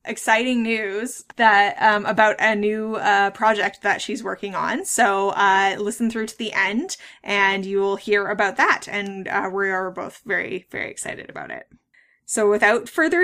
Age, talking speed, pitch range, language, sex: 20-39, 175 wpm, 195-235 Hz, English, female